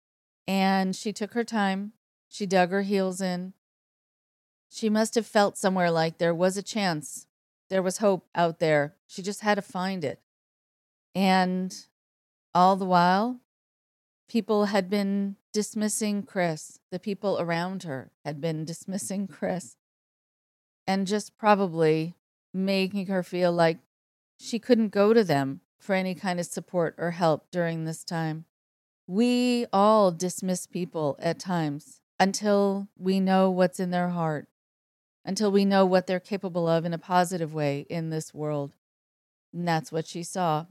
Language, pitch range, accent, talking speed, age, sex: English, 165-205 Hz, American, 150 wpm, 40-59, female